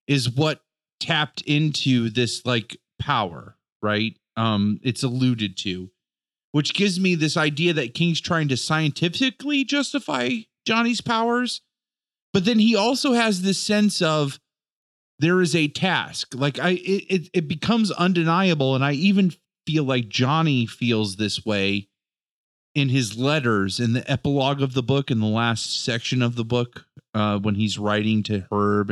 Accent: American